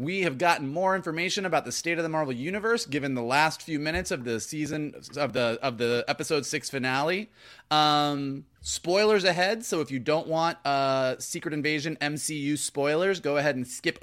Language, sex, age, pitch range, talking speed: English, male, 30-49, 135-180 Hz, 190 wpm